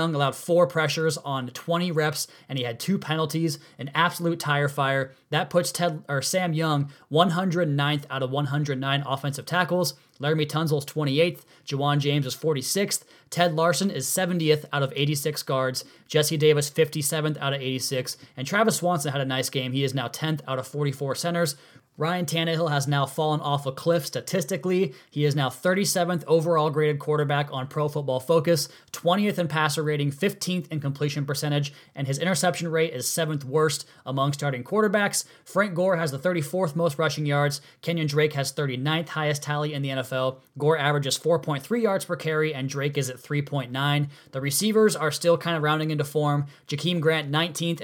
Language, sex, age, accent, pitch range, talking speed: English, male, 20-39, American, 140-170 Hz, 175 wpm